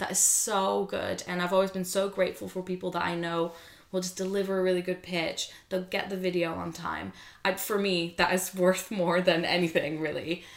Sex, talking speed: female, 210 wpm